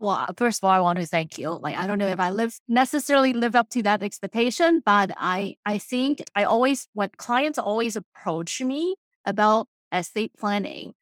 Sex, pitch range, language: female, 190-245 Hz, English